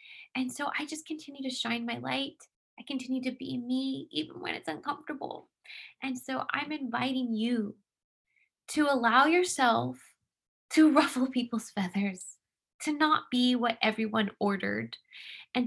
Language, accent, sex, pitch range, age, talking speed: English, American, female, 230-300 Hz, 20-39, 140 wpm